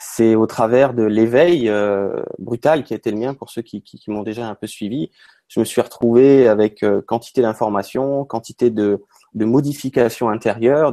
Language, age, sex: French, 30-49, male